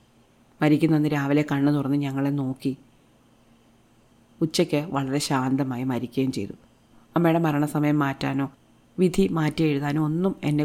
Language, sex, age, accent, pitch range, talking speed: Malayalam, female, 30-49, native, 130-155 Hz, 105 wpm